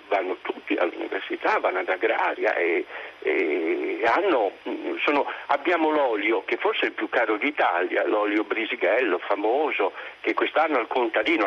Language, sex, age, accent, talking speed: Italian, male, 50-69, native, 135 wpm